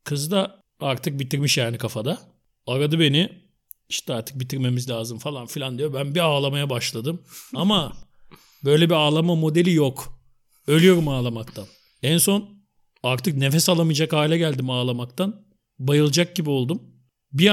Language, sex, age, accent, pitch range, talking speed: Turkish, male, 50-69, native, 140-190 Hz, 135 wpm